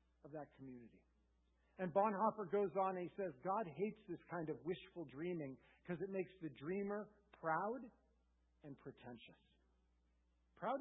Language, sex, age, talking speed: English, male, 50-69, 145 wpm